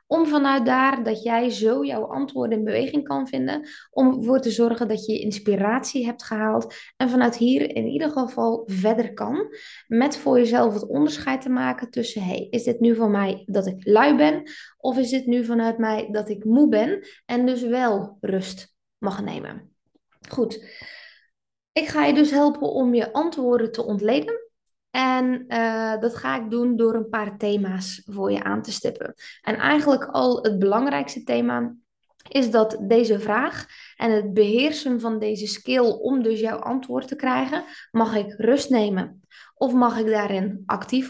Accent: Dutch